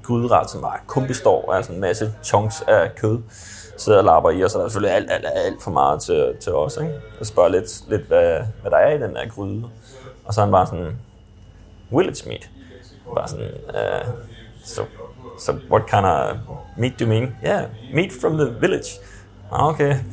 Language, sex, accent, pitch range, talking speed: Danish, male, native, 105-130 Hz, 195 wpm